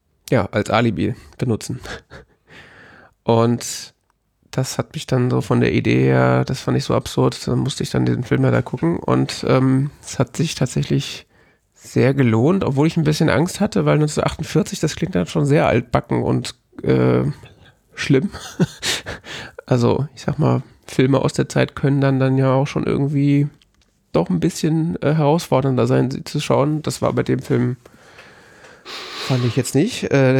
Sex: male